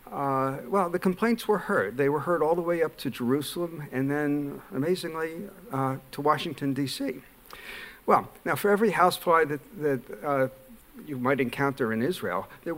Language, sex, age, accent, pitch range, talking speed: English, male, 60-79, American, 130-170 Hz, 170 wpm